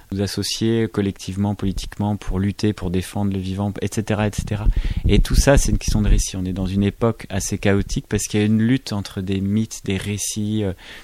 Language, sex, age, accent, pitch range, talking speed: French, male, 30-49, French, 95-110 Hz, 205 wpm